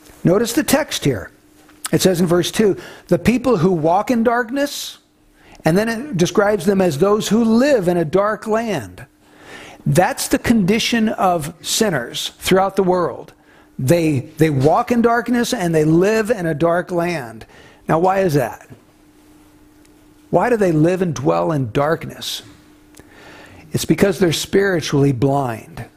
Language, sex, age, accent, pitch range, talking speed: English, male, 60-79, American, 155-205 Hz, 150 wpm